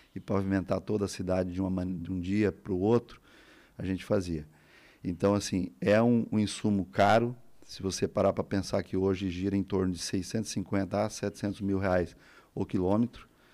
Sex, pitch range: male, 95-110 Hz